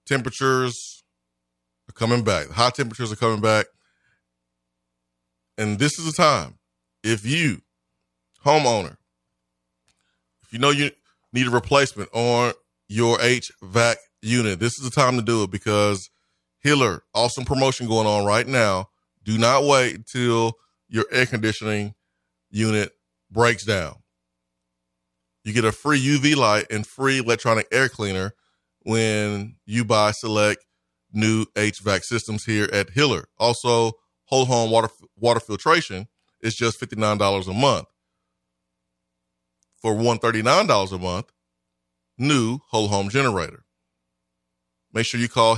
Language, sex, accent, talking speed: English, male, American, 135 wpm